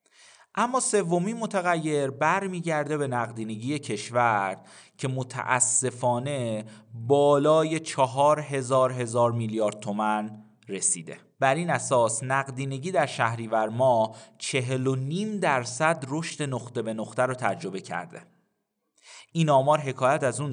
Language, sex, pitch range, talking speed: Persian, male, 115-155 Hz, 115 wpm